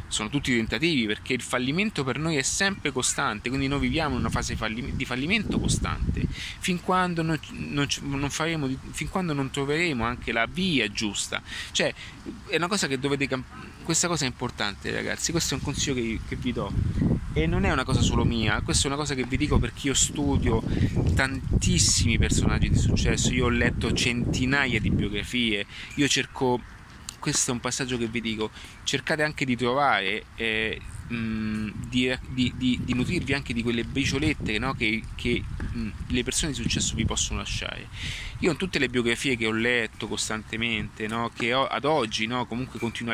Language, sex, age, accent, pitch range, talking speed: Italian, male, 30-49, native, 110-140 Hz, 170 wpm